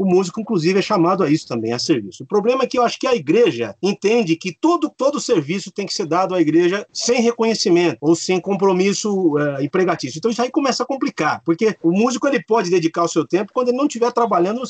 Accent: Brazilian